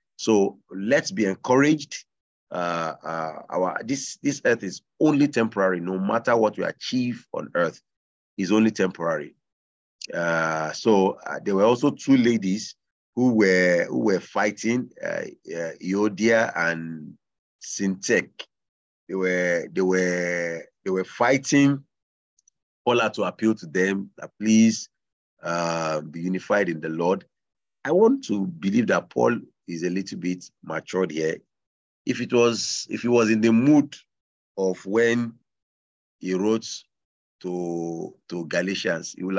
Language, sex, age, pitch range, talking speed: English, male, 40-59, 90-115 Hz, 140 wpm